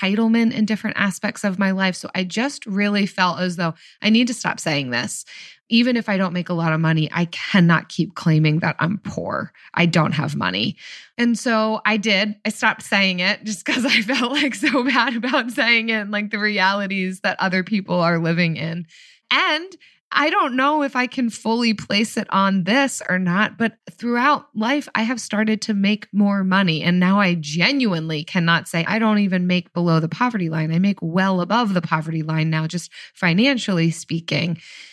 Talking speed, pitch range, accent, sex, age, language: 200 wpm, 170-230 Hz, American, female, 20-39, English